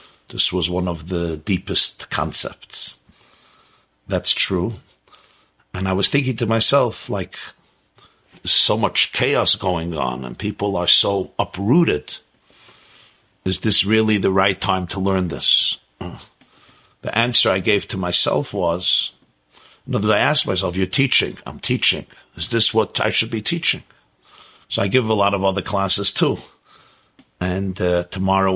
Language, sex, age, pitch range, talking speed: English, male, 50-69, 90-100 Hz, 145 wpm